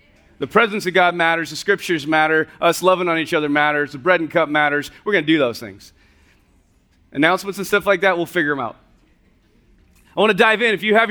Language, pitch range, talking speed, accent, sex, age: English, 180-230 Hz, 225 wpm, American, male, 30-49